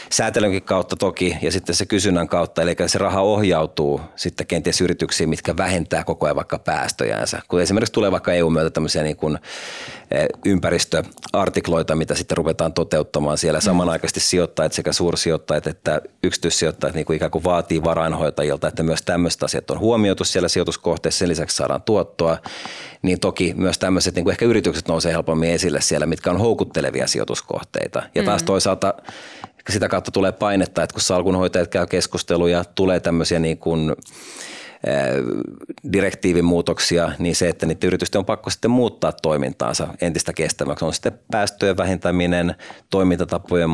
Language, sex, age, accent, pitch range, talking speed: Finnish, male, 30-49, native, 80-95 Hz, 145 wpm